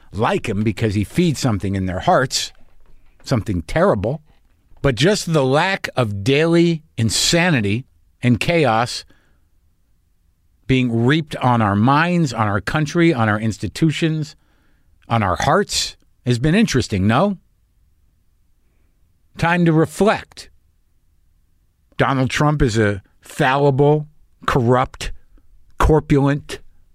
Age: 50-69